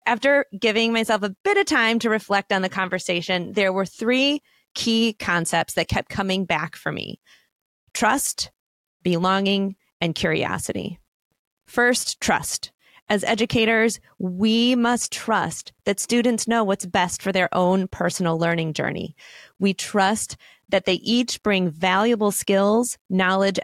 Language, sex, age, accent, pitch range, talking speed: English, female, 30-49, American, 180-225 Hz, 135 wpm